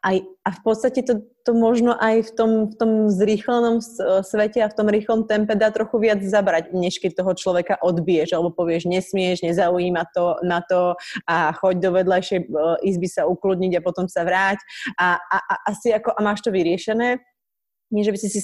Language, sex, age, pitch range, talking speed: Slovak, female, 30-49, 180-215 Hz, 190 wpm